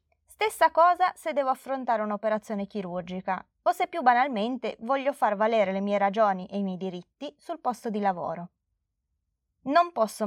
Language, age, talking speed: Italian, 20-39, 160 wpm